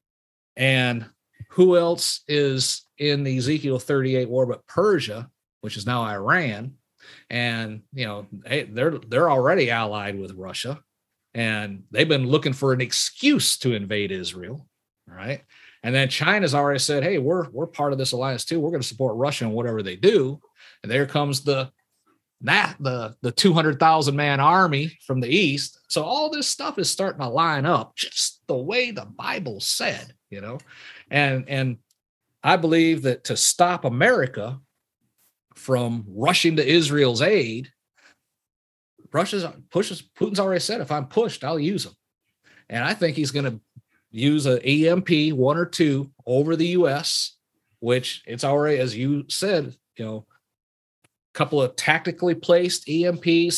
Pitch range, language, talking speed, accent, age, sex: 125-160 Hz, English, 160 wpm, American, 40-59, male